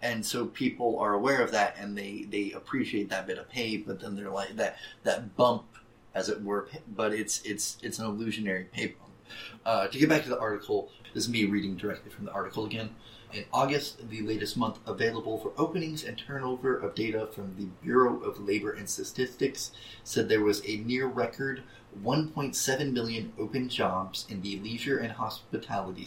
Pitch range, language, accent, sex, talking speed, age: 105-130 Hz, English, American, male, 190 wpm, 30-49